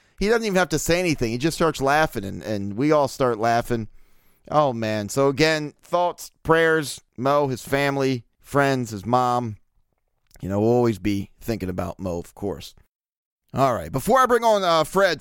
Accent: American